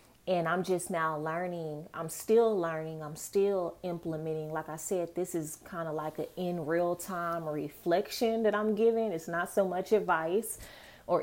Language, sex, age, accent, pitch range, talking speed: English, female, 20-39, American, 160-195 Hz, 175 wpm